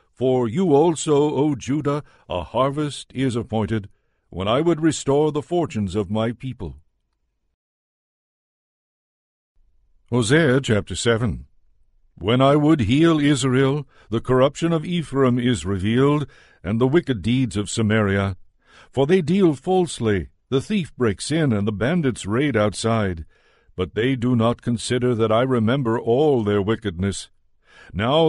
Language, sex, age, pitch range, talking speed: English, male, 60-79, 105-140 Hz, 135 wpm